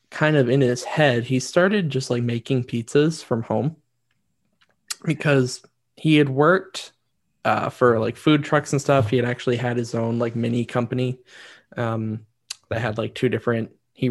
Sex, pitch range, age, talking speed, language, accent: male, 120-150 Hz, 20-39, 170 wpm, English, American